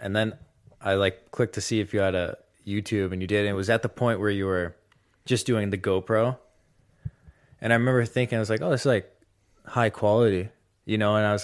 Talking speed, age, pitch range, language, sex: 235 wpm, 20-39, 95-115 Hz, English, male